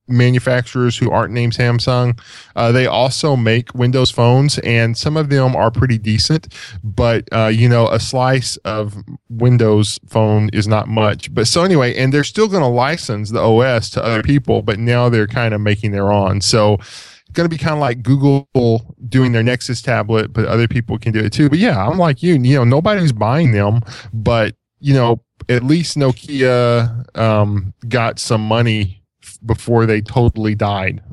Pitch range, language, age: 105-125 Hz, English, 10-29